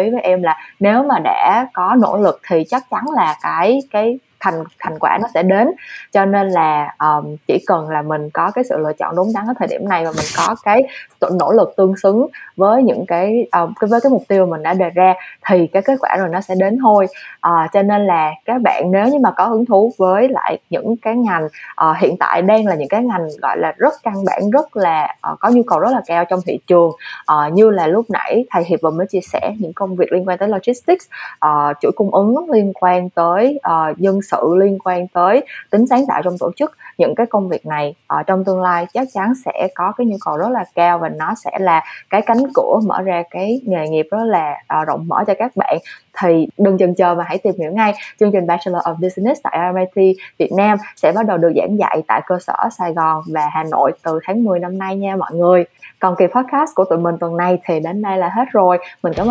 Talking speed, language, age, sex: 250 wpm, Vietnamese, 20-39, female